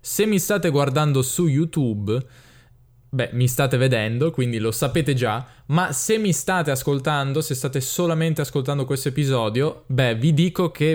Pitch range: 125-160 Hz